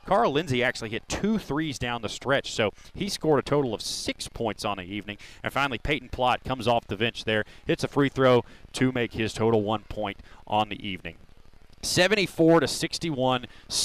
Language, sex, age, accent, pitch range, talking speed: English, male, 30-49, American, 115-150 Hz, 185 wpm